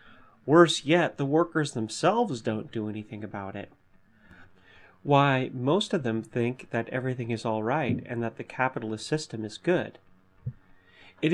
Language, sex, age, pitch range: English, male, 30-49, 105-135 Hz